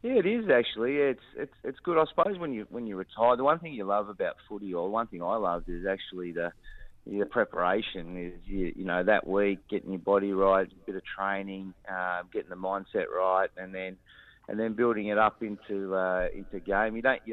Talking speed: 225 wpm